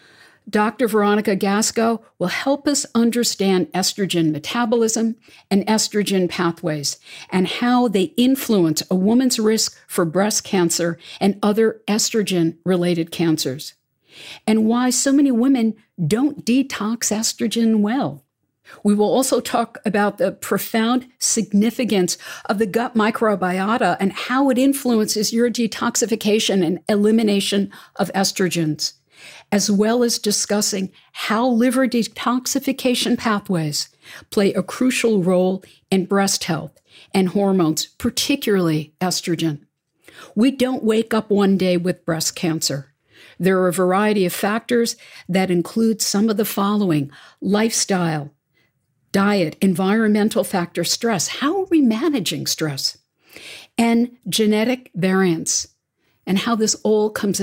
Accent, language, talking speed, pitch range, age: American, English, 120 wpm, 180-230 Hz, 50-69